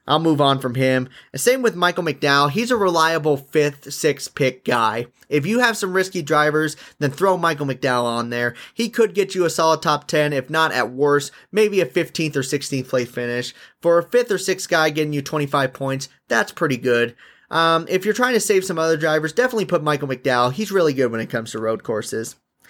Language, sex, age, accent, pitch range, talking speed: English, male, 30-49, American, 135-185 Hz, 215 wpm